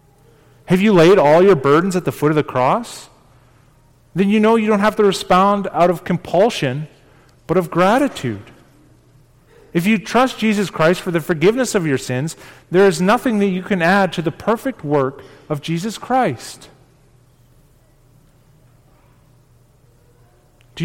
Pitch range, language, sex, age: 130-210 Hz, English, male, 30-49